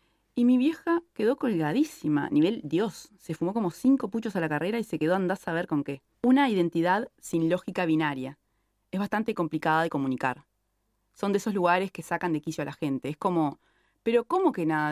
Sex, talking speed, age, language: female, 200 wpm, 20-39, Spanish